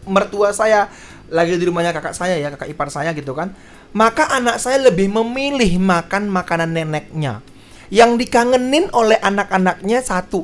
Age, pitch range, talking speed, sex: 20-39, 170-255 Hz, 150 wpm, male